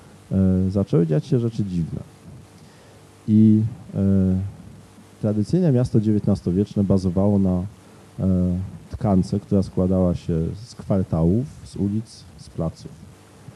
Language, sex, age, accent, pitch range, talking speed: Polish, male, 40-59, native, 90-110 Hz, 100 wpm